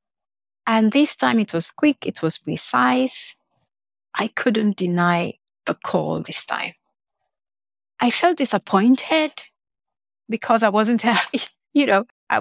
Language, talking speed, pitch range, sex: English, 120 wpm, 190-255 Hz, female